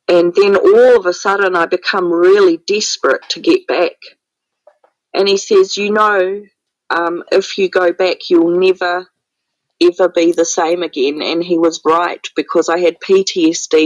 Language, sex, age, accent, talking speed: English, female, 30-49, Australian, 165 wpm